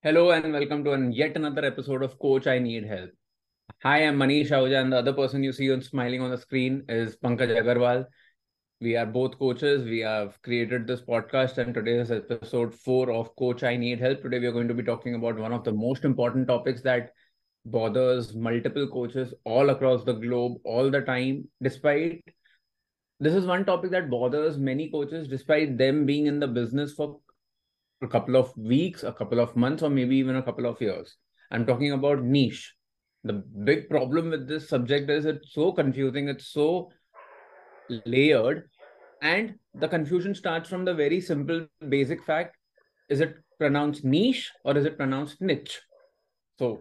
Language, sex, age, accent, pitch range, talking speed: Hindi, male, 20-39, native, 125-150 Hz, 185 wpm